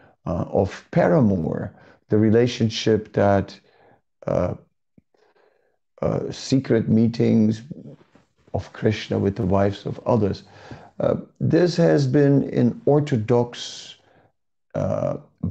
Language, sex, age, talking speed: English, male, 50-69, 95 wpm